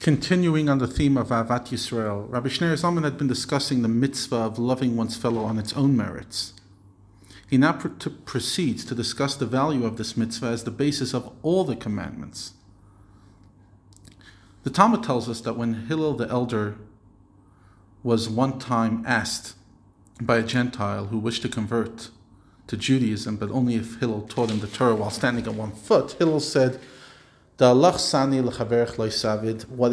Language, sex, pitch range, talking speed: English, male, 110-150 Hz, 155 wpm